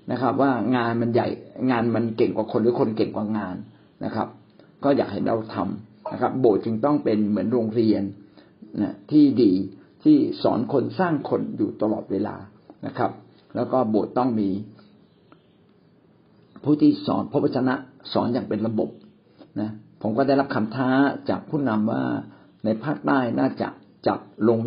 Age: 60-79